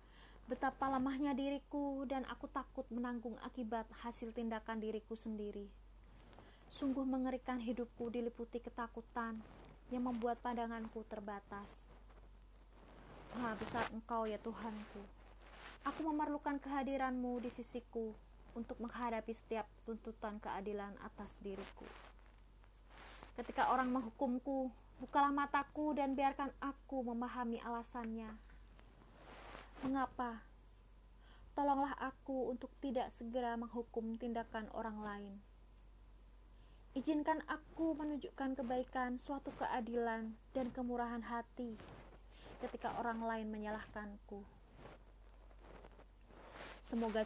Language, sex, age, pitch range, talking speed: Indonesian, female, 20-39, 220-260 Hz, 90 wpm